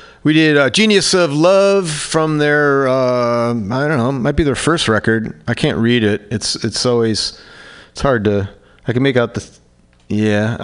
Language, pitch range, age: English, 110-150 Hz, 40-59